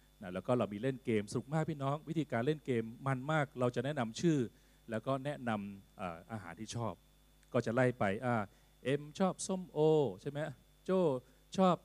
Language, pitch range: Thai, 115-155 Hz